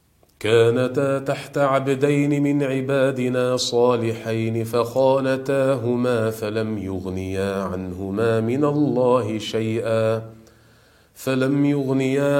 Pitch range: 110-135 Hz